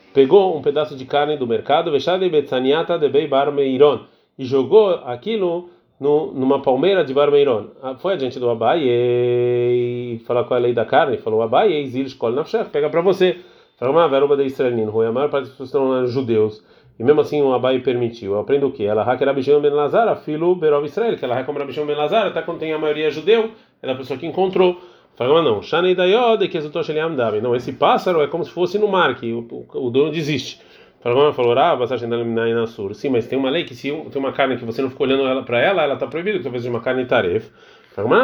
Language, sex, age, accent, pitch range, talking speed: Portuguese, male, 30-49, Brazilian, 120-170 Hz, 210 wpm